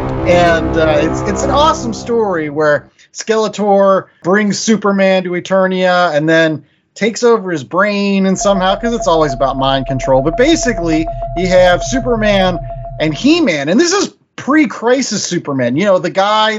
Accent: American